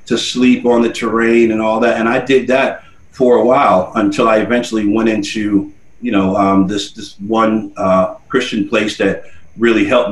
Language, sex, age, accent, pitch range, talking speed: English, male, 40-59, American, 100-130 Hz, 190 wpm